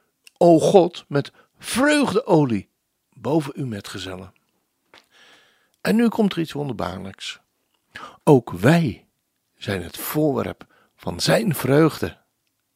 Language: Dutch